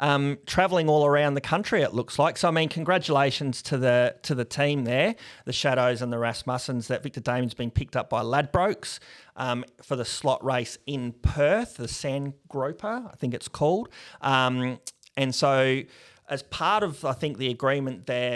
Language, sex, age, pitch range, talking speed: English, male, 30-49, 125-140 Hz, 185 wpm